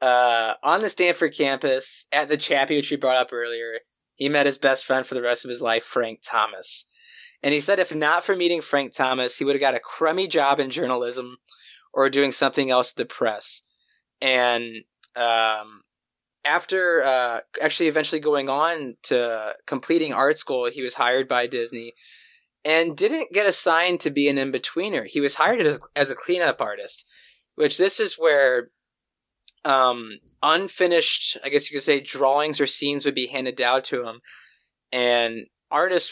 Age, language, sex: 20-39, English, male